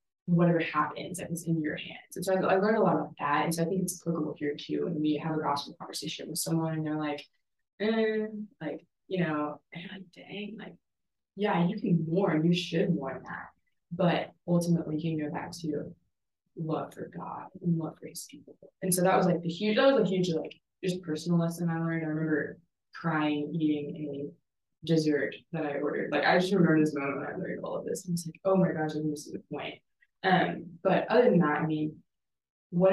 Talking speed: 230 wpm